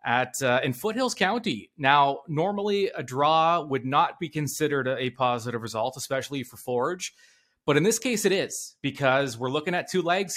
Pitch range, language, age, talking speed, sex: 125-170 Hz, English, 20-39, 185 wpm, male